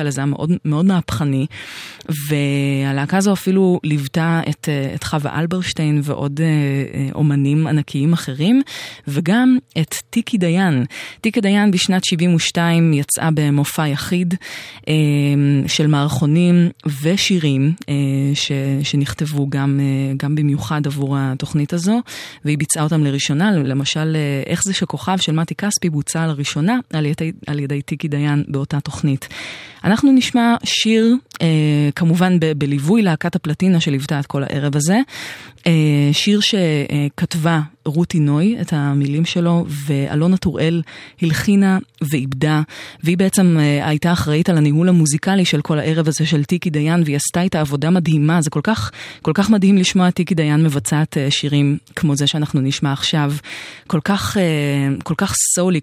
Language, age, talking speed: Hebrew, 20-39, 135 wpm